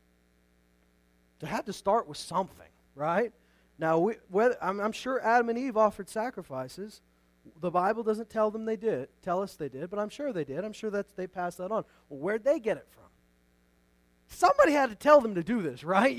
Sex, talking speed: male, 210 wpm